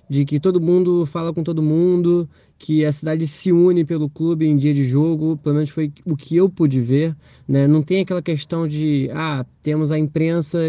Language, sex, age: Portuguese, male, 20-39